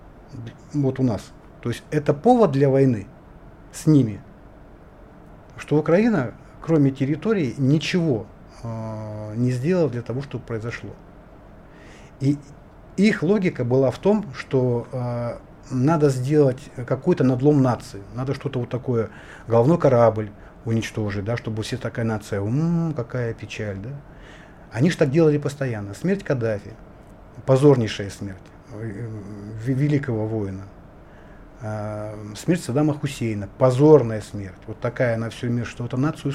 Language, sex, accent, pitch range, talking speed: Russian, male, native, 115-150 Hz, 125 wpm